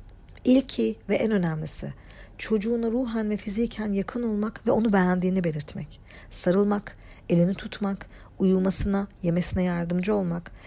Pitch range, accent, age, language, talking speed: 180-240 Hz, native, 50-69, Turkish, 120 wpm